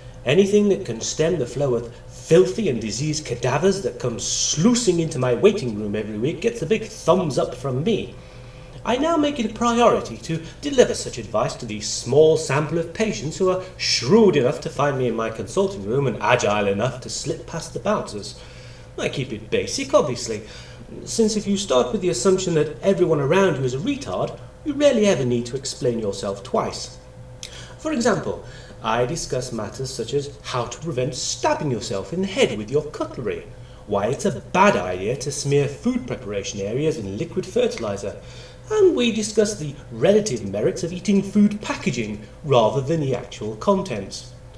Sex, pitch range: male, 125-195 Hz